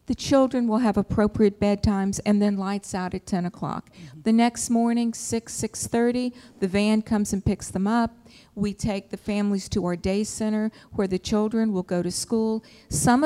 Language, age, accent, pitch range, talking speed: English, 50-69, American, 185-225 Hz, 185 wpm